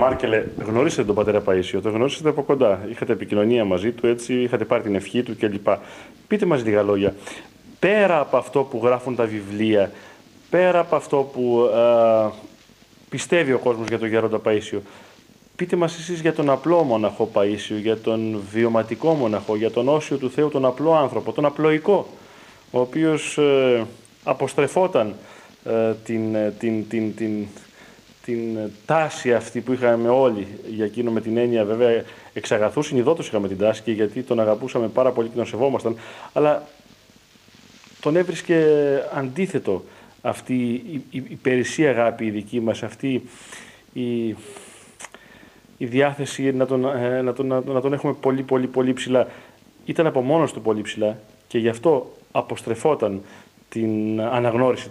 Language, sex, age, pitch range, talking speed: Greek, male, 30-49, 110-135 Hz, 155 wpm